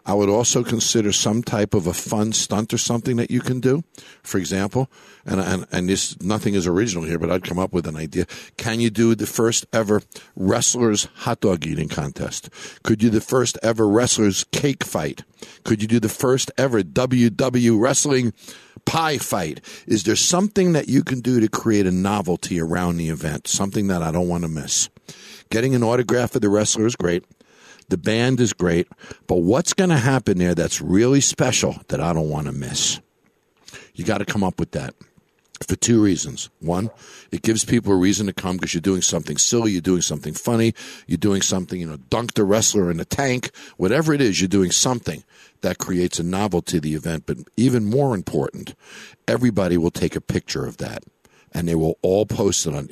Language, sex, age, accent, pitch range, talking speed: English, male, 60-79, American, 90-120 Hz, 205 wpm